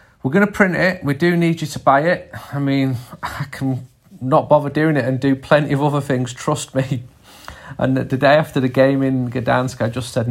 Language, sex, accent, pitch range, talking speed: English, male, British, 110-130 Hz, 225 wpm